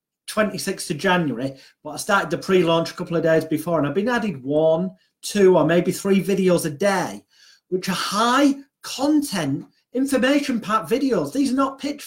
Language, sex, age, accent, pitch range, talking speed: English, male, 30-49, British, 160-215 Hz, 185 wpm